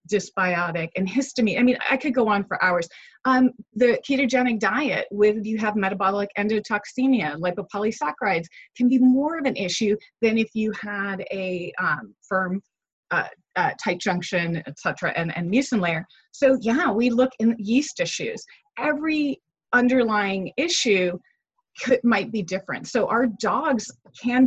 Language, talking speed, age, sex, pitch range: English, 155 wpm, 30-49, female, 175-230 Hz